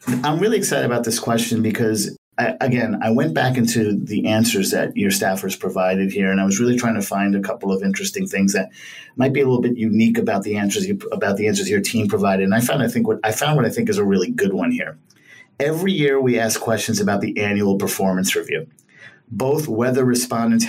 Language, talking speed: English, 230 wpm